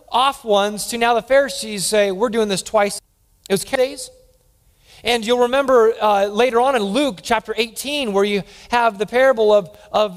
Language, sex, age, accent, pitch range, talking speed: English, male, 30-49, American, 200-255 Hz, 190 wpm